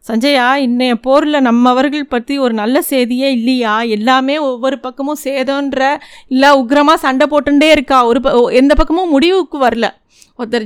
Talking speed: 135 wpm